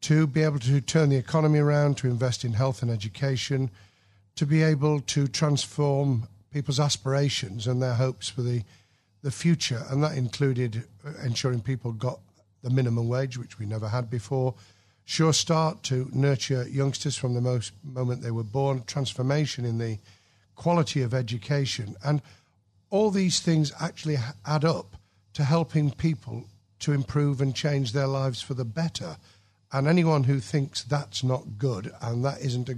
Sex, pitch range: male, 115-145 Hz